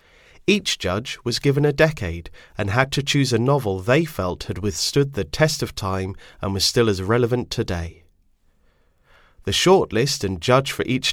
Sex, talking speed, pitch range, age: male, 175 wpm, 80-120 Hz, 30-49